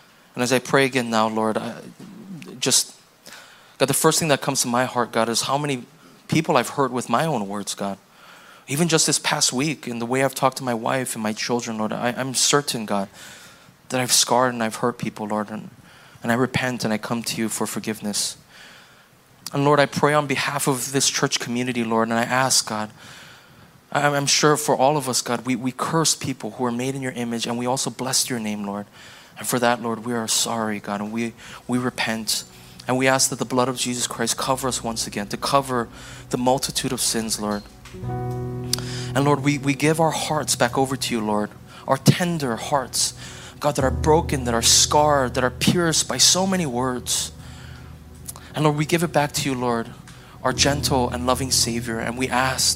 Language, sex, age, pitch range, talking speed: English, male, 20-39, 115-135 Hz, 210 wpm